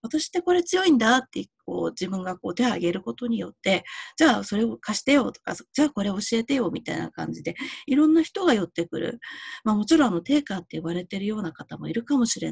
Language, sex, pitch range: Japanese, female, 170-260 Hz